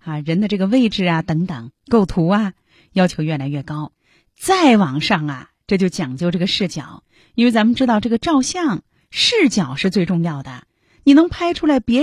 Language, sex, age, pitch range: Chinese, female, 30-49, 180-275 Hz